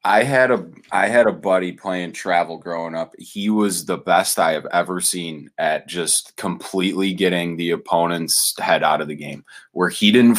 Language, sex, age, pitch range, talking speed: English, male, 20-39, 95-125 Hz, 190 wpm